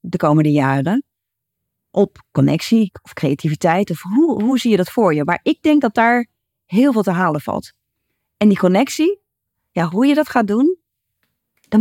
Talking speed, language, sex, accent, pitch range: 180 wpm, Dutch, female, Dutch, 160-225 Hz